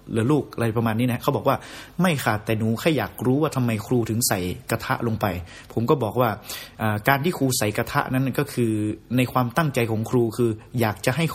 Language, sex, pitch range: Thai, male, 115-145 Hz